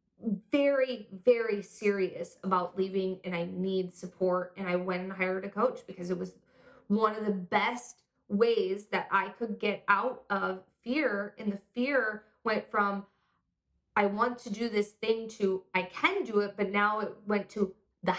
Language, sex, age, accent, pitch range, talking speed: English, female, 20-39, American, 195-240 Hz, 175 wpm